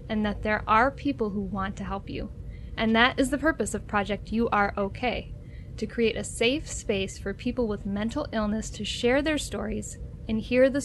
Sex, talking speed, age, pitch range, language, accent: female, 205 wpm, 10-29, 215-260 Hz, English, American